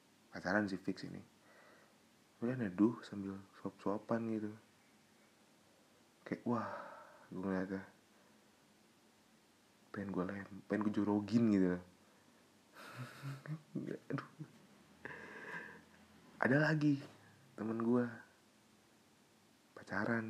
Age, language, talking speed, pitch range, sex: 30-49, Indonesian, 75 wpm, 95-120 Hz, male